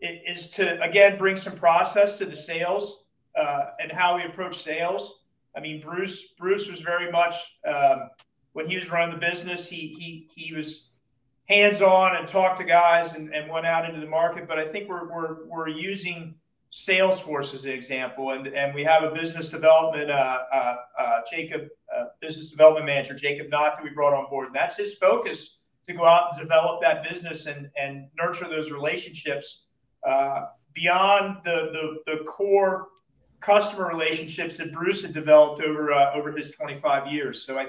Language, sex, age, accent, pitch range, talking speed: English, male, 40-59, American, 150-180 Hz, 185 wpm